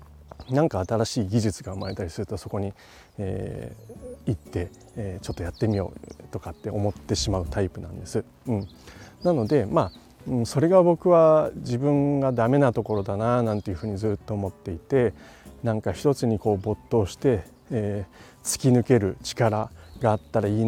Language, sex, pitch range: Japanese, male, 95-125 Hz